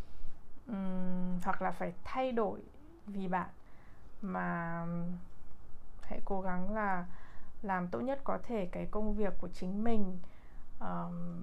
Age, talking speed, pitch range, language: 20-39, 135 wpm, 175-205 Hz, Vietnamese